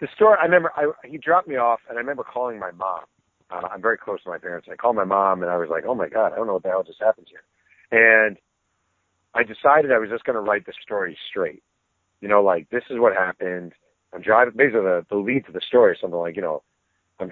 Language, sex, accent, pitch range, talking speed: English, male, American, 90-130 Hz, 265 wpm